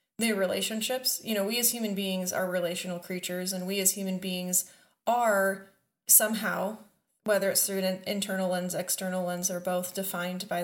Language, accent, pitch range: English, American, 185-210 Hz